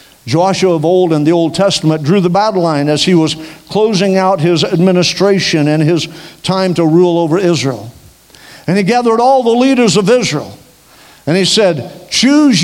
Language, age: English, 50-69